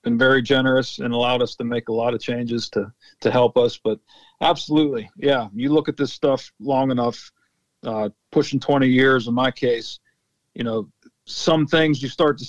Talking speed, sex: 190 wpm, male